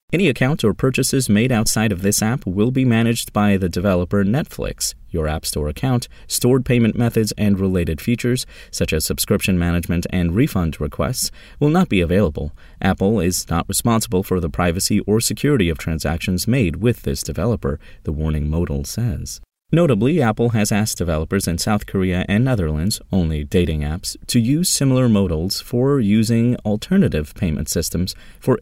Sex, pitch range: male, 80-110 Hz